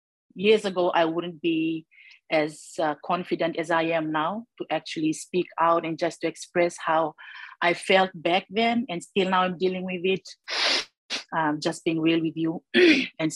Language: English